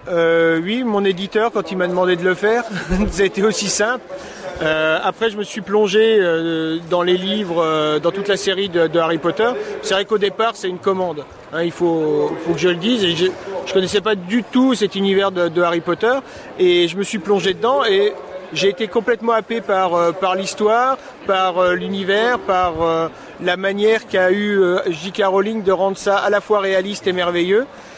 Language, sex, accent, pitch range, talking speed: French, male, French, 180-215 Hz, 210 wpm